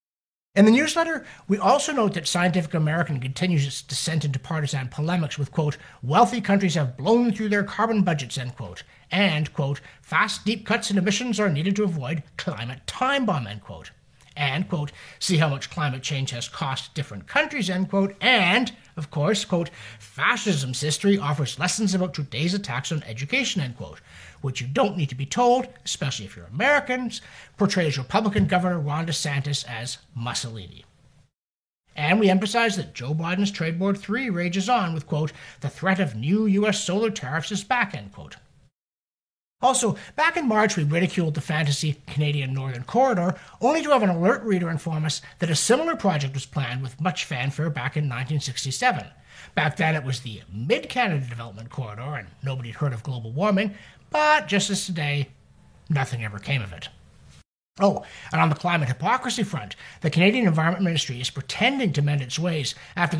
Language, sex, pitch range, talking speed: English, male, 140-200 Hz, 175 wpm